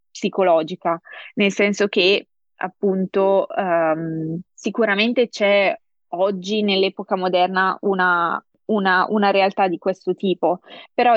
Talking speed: 100 wpm